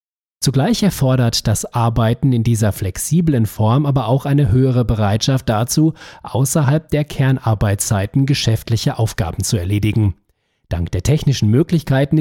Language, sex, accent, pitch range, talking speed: German, male, German, 105-145 Hz, 125 wpm